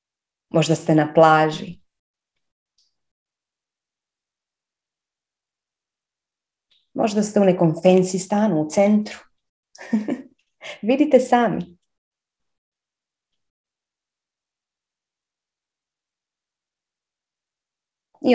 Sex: female